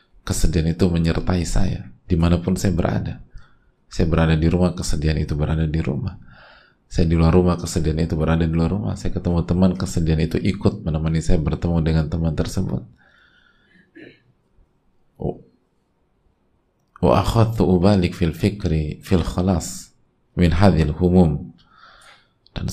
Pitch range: 80-95 Hz